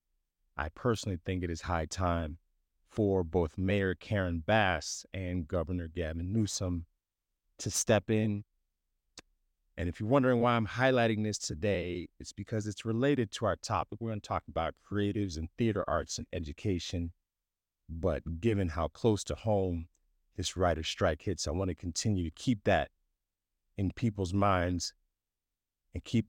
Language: English